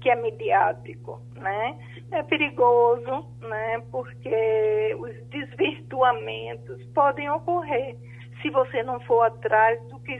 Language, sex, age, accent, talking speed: Portuguese, female, 50-69, Brazilian, 110 wpm